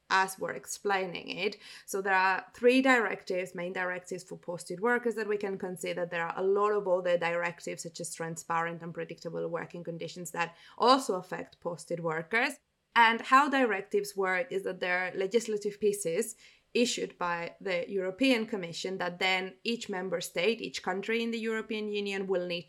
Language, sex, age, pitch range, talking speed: English, female, 20-39, 180-225 Hz, 170 wpm